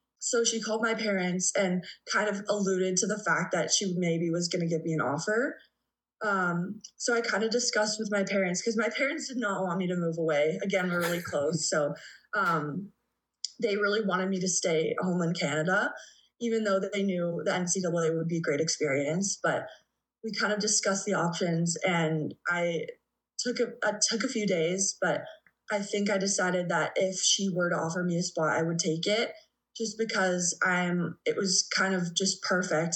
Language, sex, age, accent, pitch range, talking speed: English, female, 20-39, American, 170-205 Hz, 195 wpm